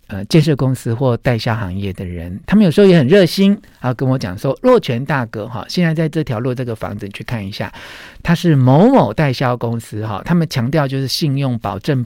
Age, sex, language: 50-69, male, Chinese